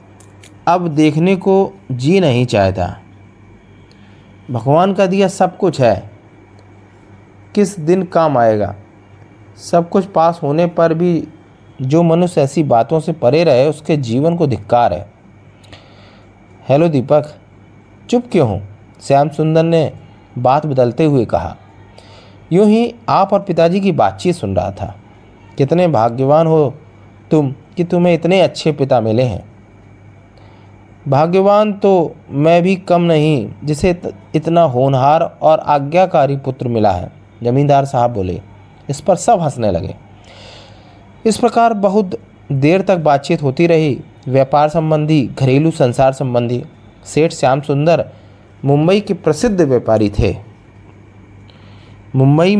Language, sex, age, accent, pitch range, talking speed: Hindi, male, 30-49, native, 105-165 Hz, 125 wpm